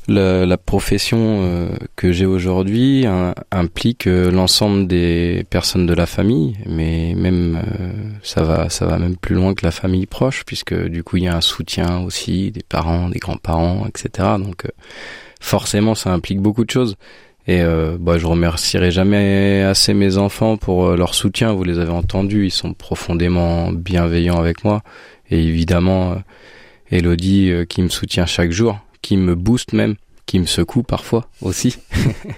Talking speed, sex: 175 wpm, male